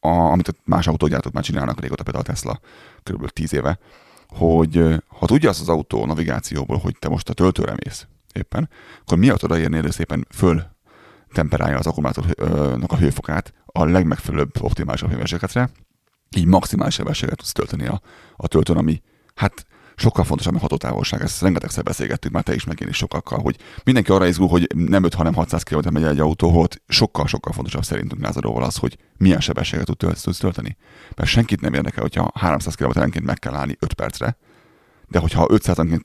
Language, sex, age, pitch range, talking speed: Hungarian, male, 30-49, 80-95 Hz, 180 wpm